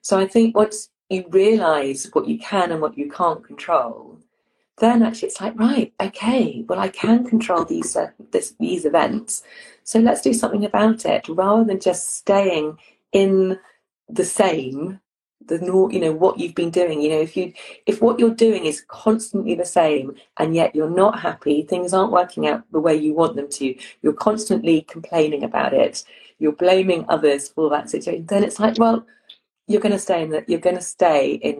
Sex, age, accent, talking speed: female, 30-49, British, 195 wpm